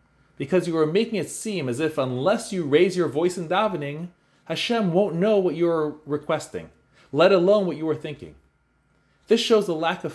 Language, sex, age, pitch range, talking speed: English, male, 30-49, 135-195 Hz, 195 wpm